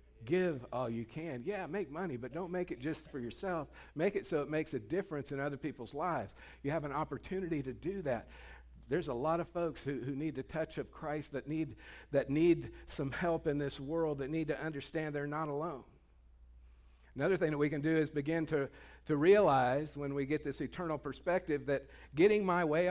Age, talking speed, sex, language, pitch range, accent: 50-69, 210 wpm, male, English, 115-155 Hz, American